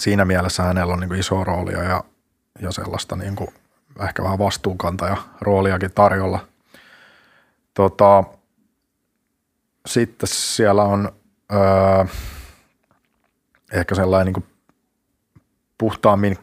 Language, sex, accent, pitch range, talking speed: Finnish, male, native, 90-100 Hz, 90 wpm